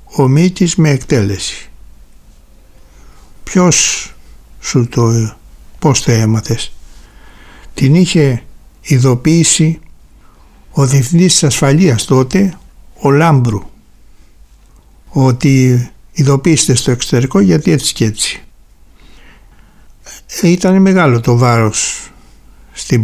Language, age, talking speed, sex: Greek, 60-79, 80 wpm, male